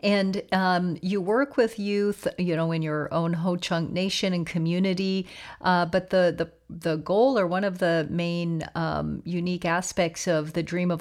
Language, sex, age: English, female, 40-59